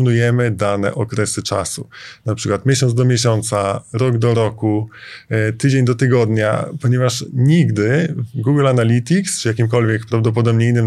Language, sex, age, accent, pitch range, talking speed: Polish, male, 20-39, native, 105-120 Hz, 125 wpm